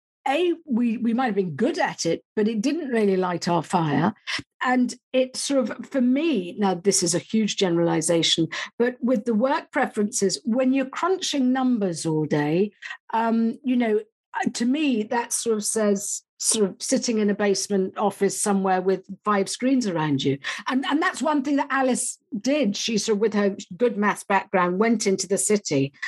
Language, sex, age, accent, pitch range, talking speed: English, female, 50-69, British, 195-250 Hz, 185 wpm